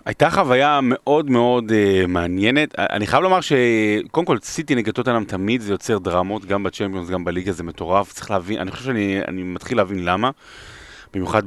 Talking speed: 180 wpm